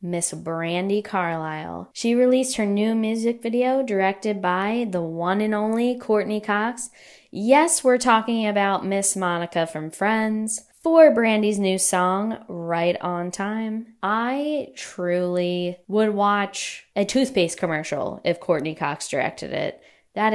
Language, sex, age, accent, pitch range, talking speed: English, female, 10-29, American, 170-215 Hz, 135 wpm